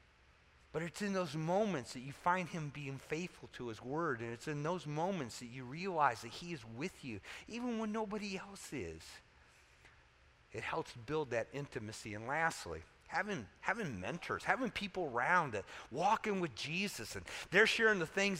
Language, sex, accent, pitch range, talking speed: English, male, American, 120-195 Hz, 175 wpm